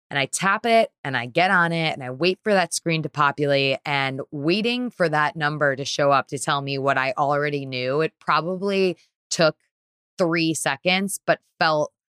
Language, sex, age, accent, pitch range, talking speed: English, female, 20-39, American, 150-175 Hz, 195 wpm